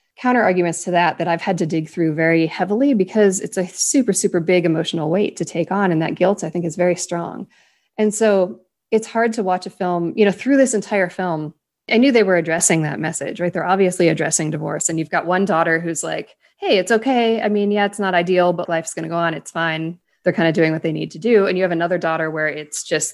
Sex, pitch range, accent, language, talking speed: female, 160-200 Hz, American, English, 255 wpm